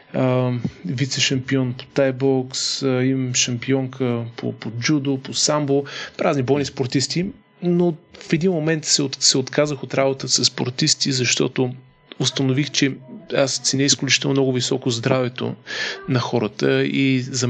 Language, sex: Bulgarian, male